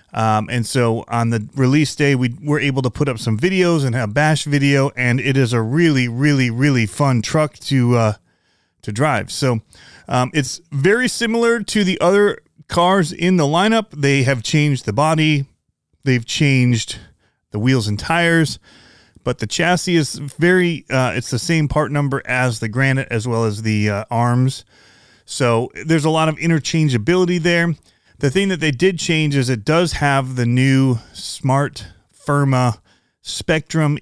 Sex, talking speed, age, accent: male, 170 wpm, 30-49, American